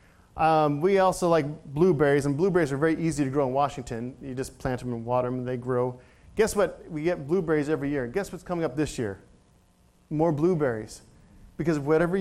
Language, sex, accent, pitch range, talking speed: English, male, American, 135-175 Hz, 200 wpm